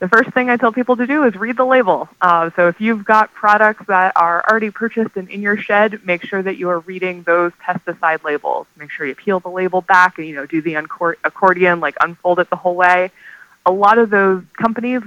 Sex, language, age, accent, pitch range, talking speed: female, English, 20-39, American, 155-195 Hz, 235 wpm